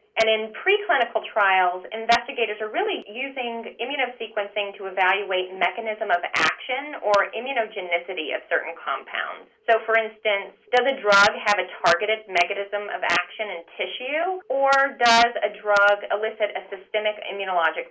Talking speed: 135 wpm